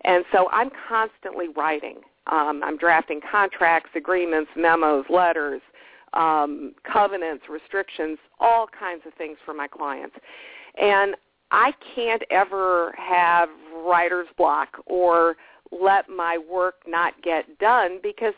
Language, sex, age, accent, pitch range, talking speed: English, female, 50-69, American, 160-205 Hz, 120 wpm